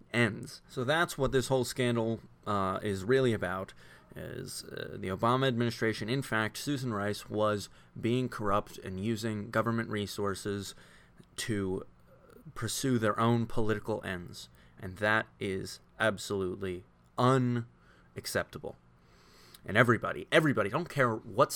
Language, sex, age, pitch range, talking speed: English, male, 20-39, 100-125 Hz, 125 wpm